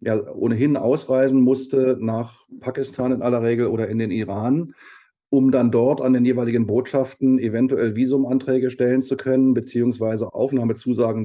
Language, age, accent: German, 30-49, German